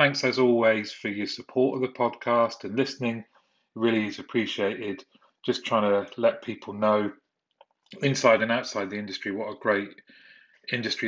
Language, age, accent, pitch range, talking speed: English, 30-49, British, 105-125 Hz, 160 wpm